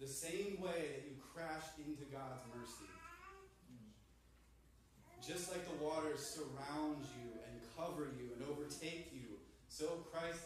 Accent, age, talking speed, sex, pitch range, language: American, 20-39, 130 wpm, male, 115-150 Hz, English